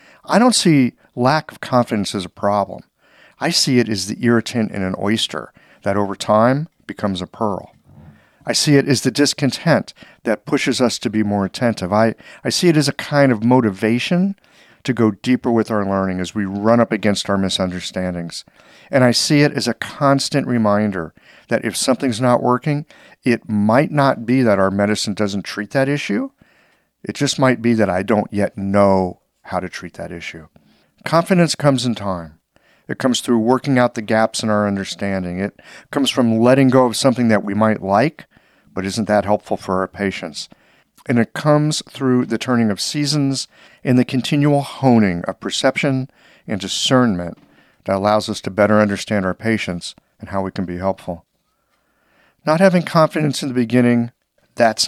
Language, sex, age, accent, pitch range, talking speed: English, male, 50-69, American, 100-135 Hz, 180 wpm